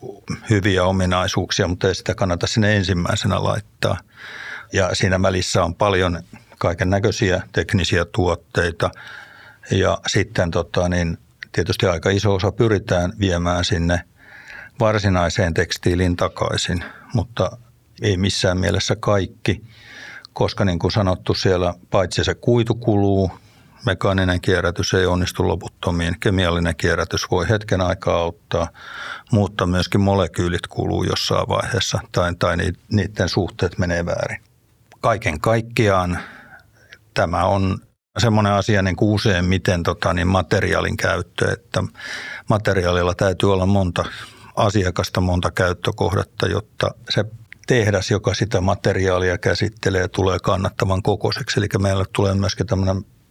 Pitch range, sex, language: 90-110 Hz, male, Finnish